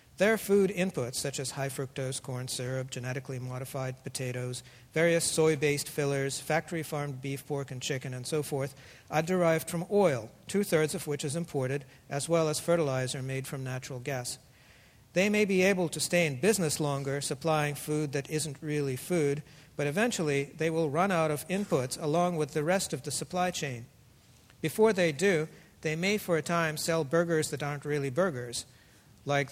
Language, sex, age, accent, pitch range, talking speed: English, male, 50-69, American, 135-165 Hz, 175 wpm